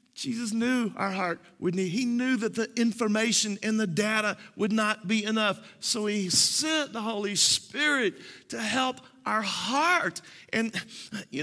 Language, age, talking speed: English, 40-59, 160 wpm